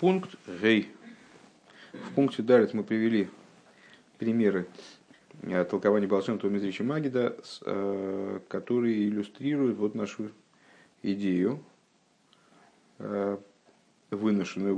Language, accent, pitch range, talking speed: Russian, native, 95-110 Hz, 70 wpm